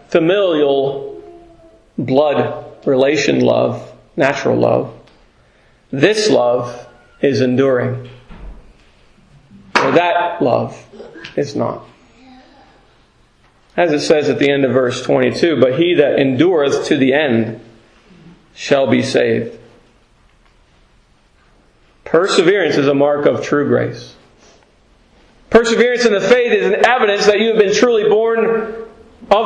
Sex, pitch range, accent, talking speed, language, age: male, 155-235 Hz, American, 110 wpm, English, 40-59